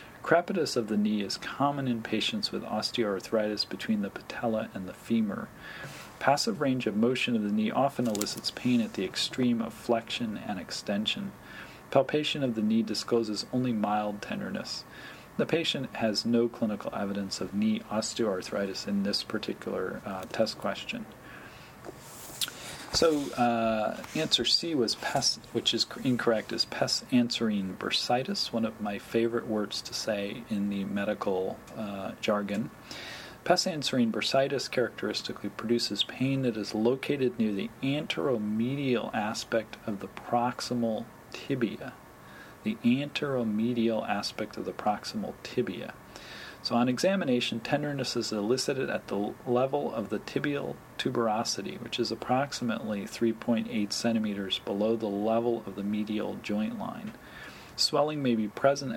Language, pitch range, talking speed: English, 105-125 Hz, 135 wpm